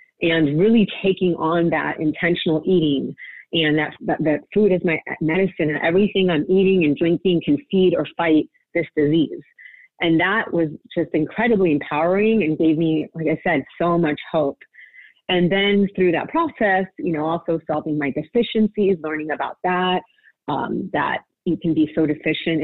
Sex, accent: female, American